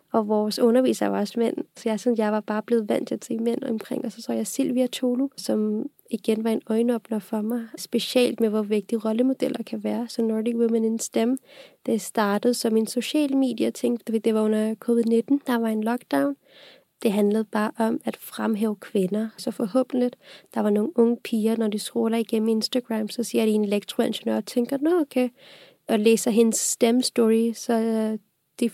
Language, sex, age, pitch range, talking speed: Danish, female, 20-39, 215-245 Hz, 195 wpm